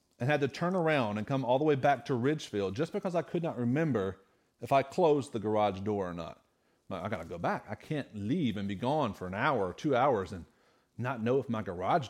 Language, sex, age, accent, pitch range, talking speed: English, male, 40-59, American, 115-160 Hz, 250 wpm